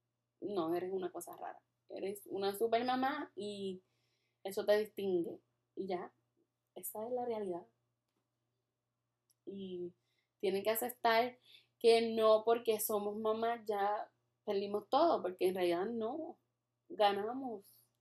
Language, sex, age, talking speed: Spanish, female, 10-29, 120 wpm